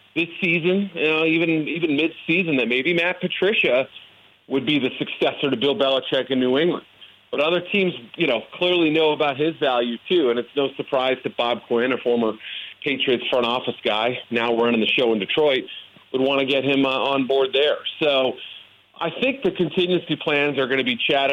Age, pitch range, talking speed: 40-59, 120-160 Hz, 200 wpm